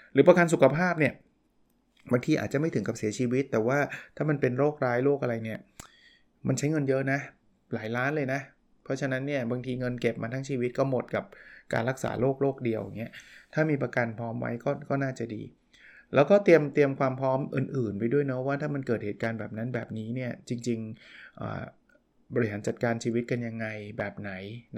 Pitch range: 115-140 Hz